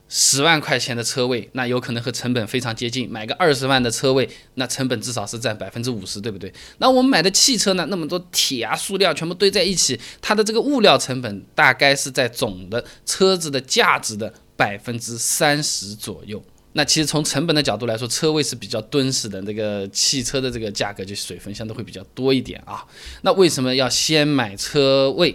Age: 20-39